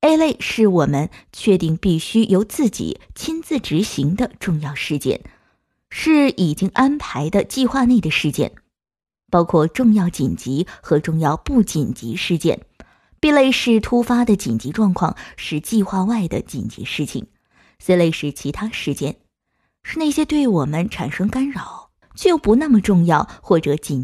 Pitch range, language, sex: 170-250 Hz, Chinese, female